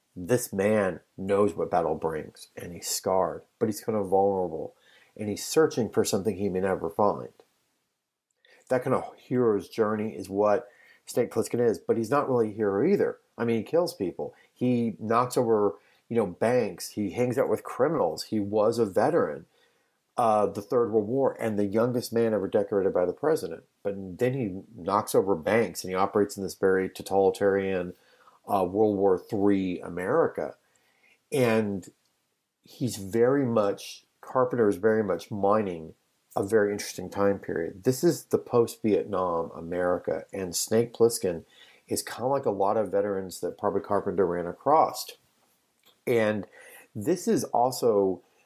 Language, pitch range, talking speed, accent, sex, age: English, 95-115 Hz, 160 wpm, American, male, 40-59